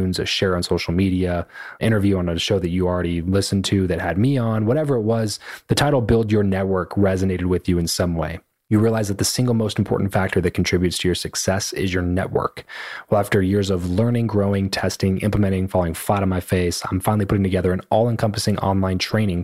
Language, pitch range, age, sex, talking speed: English, 90-110 Hz, 20-39, male, 215 wpm